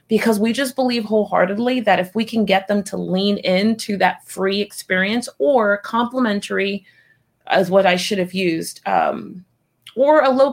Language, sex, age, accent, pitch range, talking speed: English, female, 30-49, American, 185-225 Hz, 165 wpm